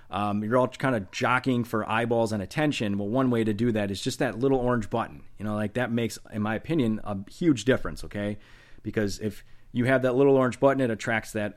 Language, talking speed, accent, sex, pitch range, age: English, 235 wpm, American, male, 105-140 Hz, 30-49